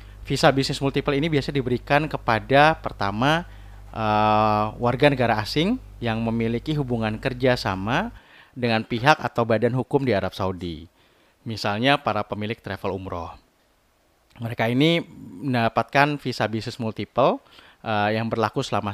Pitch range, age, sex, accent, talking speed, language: 105-140 Hz, 30-49, male, native, 125 wpm, Indonesian